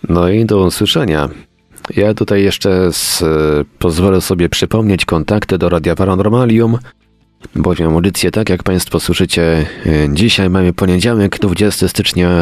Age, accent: 40-59, native